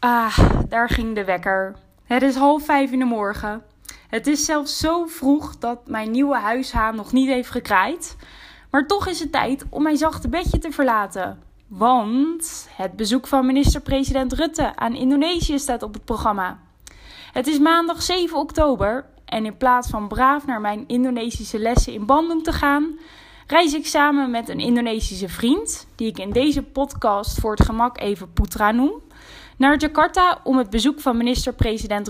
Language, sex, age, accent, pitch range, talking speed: English, female, 10-29, Dutch, 225-290 Hz, 170 wpm